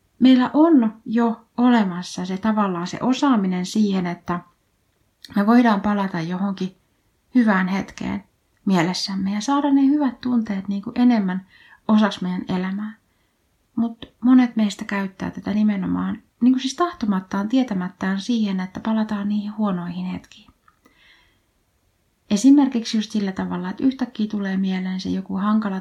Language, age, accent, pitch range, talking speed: Finnish, 30-49, native, 185-230 Hz, 130 wpm